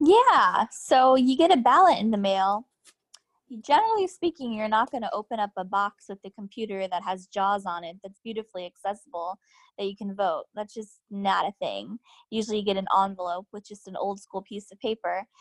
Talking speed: 205 wpm